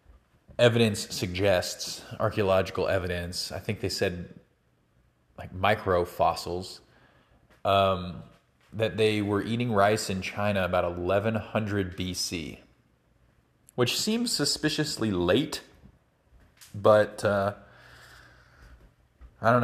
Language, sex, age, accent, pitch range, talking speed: English, male, 30-49, American, 90-115 Hz, 90 wpm